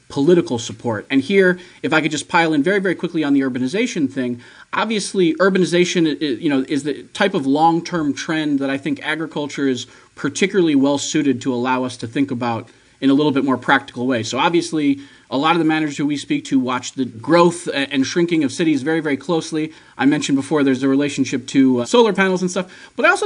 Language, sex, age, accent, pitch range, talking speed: English, male, 30-49, American, 140-190 Hz, 215 wpm